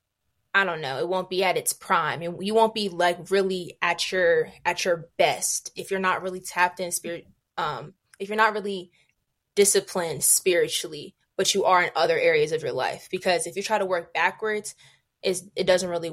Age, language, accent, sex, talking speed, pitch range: 20-39, English, American, female, 200 wpm, 175-205 Hz